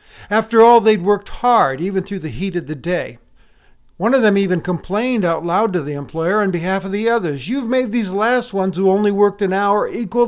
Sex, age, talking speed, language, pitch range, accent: male, 50-69, 220 wpm, English, 135-195 Hz, American